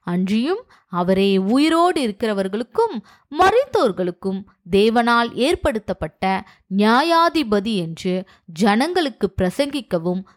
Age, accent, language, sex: 20-39, native, Tamil, female